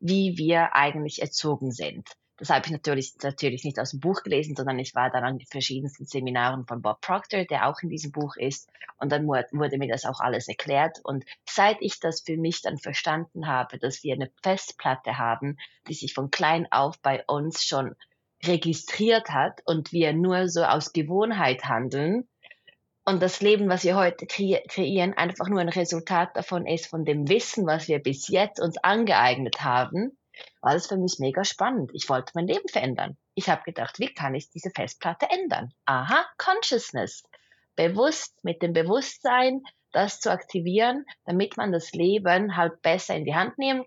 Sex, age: female, 20-39